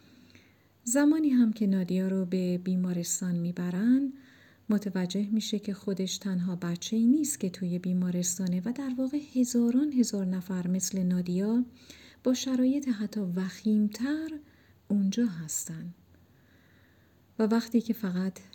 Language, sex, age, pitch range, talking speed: Persian, female, 40-59, 185-250 Hz, 115 wpm